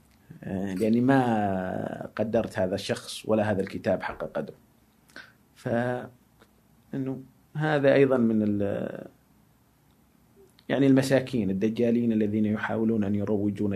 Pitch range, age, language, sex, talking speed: 105-135 Hz, 30-49, Arabic, male, 90 wpm